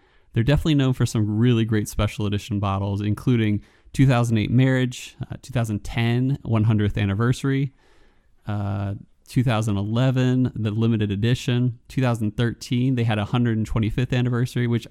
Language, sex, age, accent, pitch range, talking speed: English, male, 20-39, American, 105-125 Hz, 115 wpm